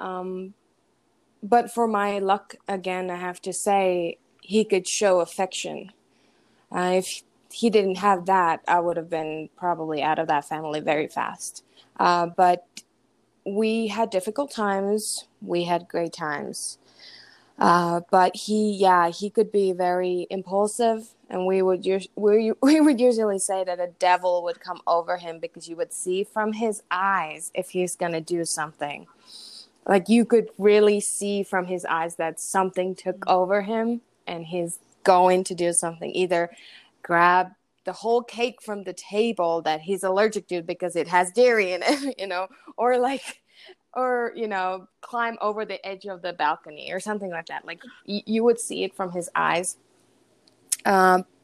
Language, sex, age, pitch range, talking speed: English, female, 20-39, 175-210 Hz, 165 wpm